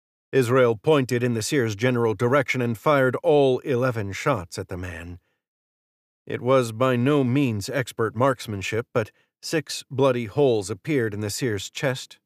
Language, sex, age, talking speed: English, male, 40-59, 150 wpm